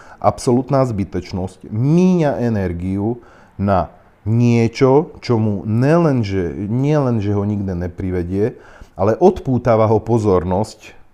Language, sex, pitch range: Slovak, male, 95-110 Hz